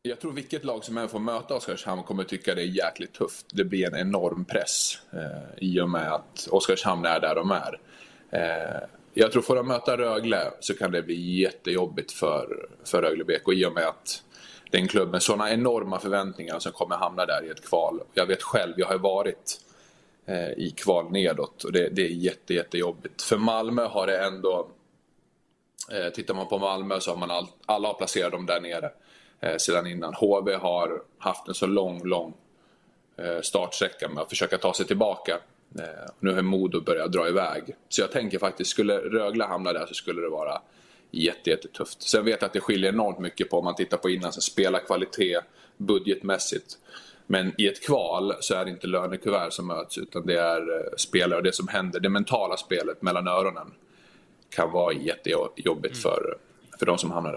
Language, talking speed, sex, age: Swedish, 195 wpm, male, 20-39